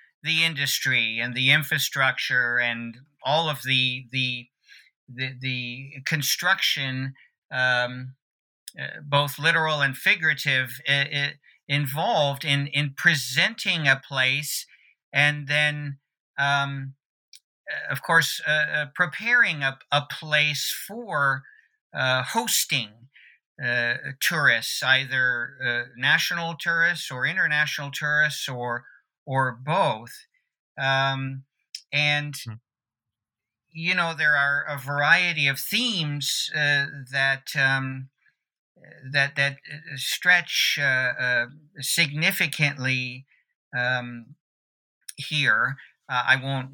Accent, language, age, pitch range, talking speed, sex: American, English, 50-69, 130-150 Hz, 100 wpm, male